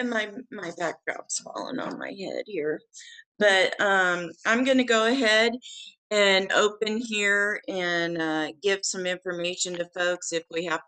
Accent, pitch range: American, 170-205 Hz